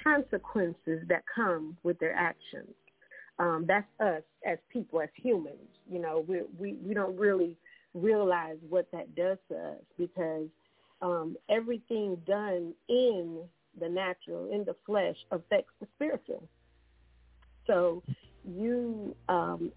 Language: English